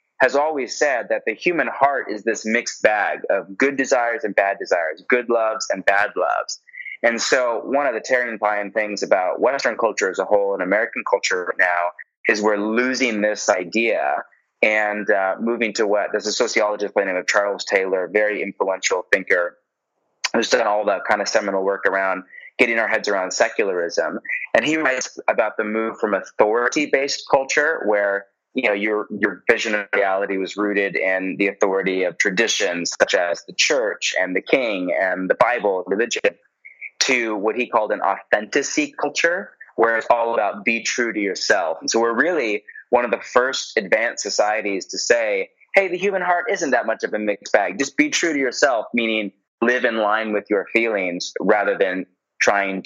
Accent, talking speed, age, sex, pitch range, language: American, 185 wpm, 20-39, male, 100-130 Hz, English